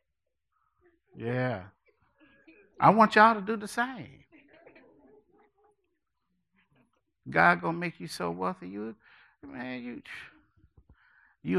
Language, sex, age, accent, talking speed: English, male, 60-79, American, 95 wpm